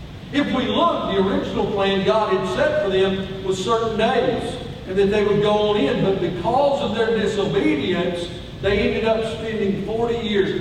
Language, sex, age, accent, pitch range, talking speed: English, male, 50-69, American, 155-215 Hz, 180 wpm